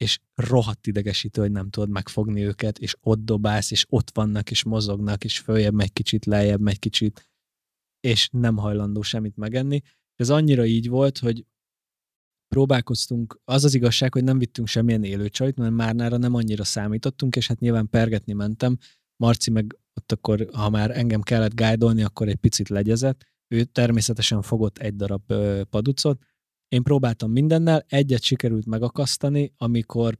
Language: Hungarian